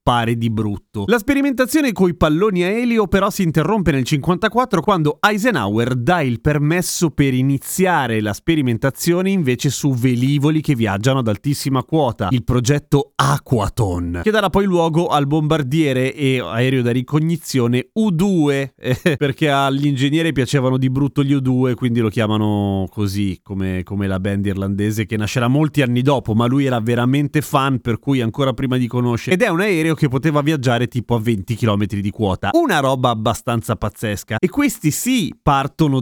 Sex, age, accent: male, 30-49, native